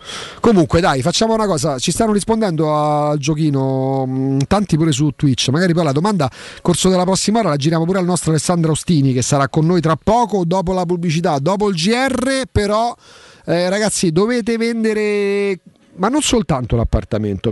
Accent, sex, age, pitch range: native, male, 40-59, 145-195 Hz